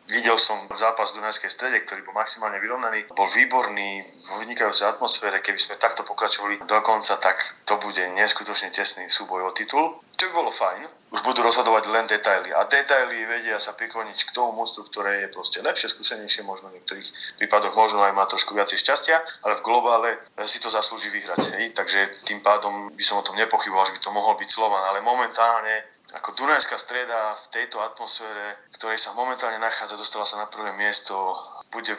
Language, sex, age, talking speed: Slovak, male, 30-49, 195 wpm